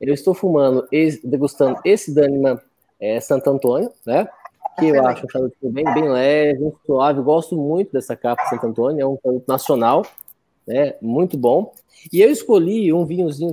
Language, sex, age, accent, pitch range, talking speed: Portuguese, male, 20-39, Brazilian, 135-190 Hz, 170 wpm